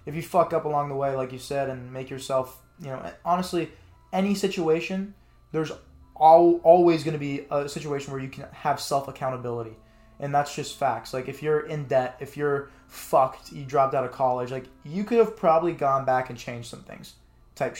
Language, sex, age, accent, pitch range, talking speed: English, male, 20-39, American, 130-160 Hz, 200 wpm